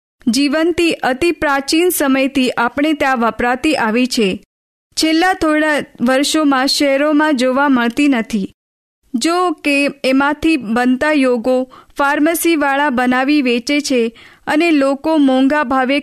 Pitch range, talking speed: 255-305 Hz, 80 wpm